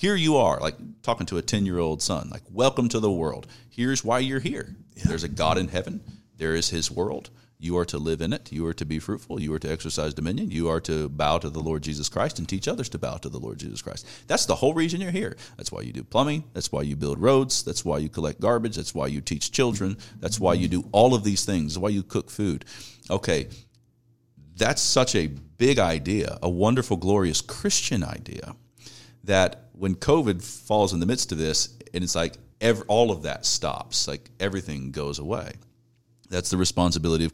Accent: American